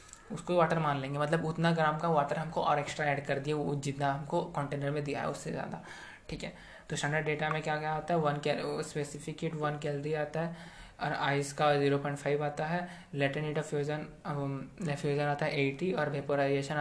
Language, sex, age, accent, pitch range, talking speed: Hindi, male, 20-39, native, 145-160 Hz, 200 wpm